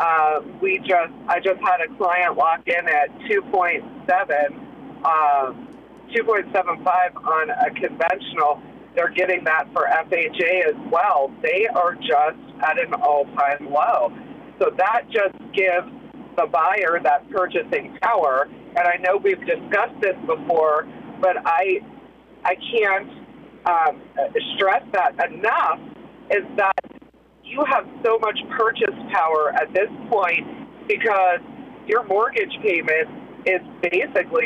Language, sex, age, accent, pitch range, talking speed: English, female, 40-59, American, 175-290 Hz, 125 wpm